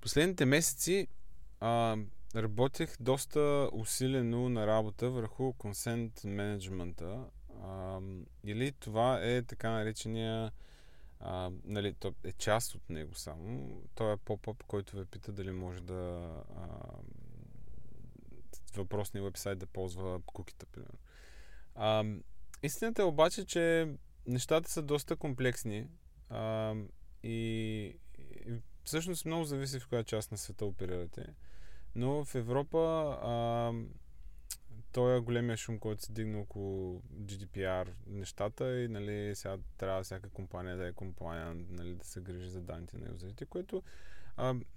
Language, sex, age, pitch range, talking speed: Bulgarian, male, 20-39, 95-130 Hz, 120 wpm